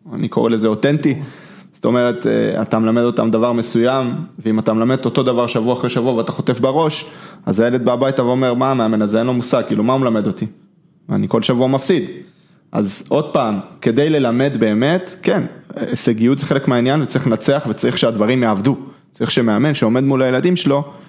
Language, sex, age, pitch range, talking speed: Hebrew, male, 20-39, 115-150 Hz, 180 wpm